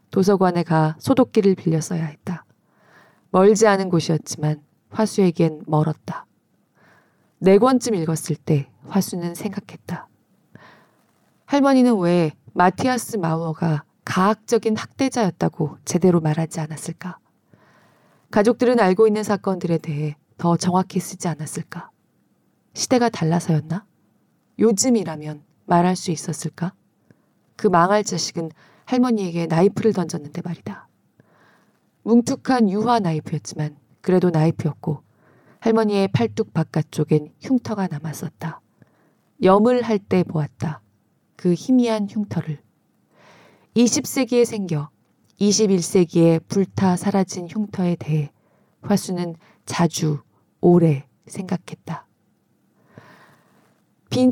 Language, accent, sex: Korean, native, female